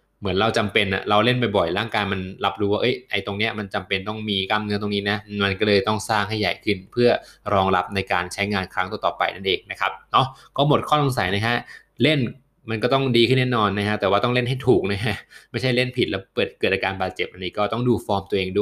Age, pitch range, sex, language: 20-39, 100-125 Hz, male, Thai